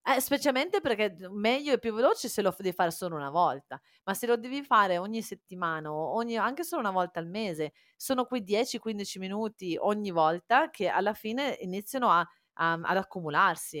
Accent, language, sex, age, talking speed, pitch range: native, Italian, female, 30-49, 185 wpm, 170-225 Hz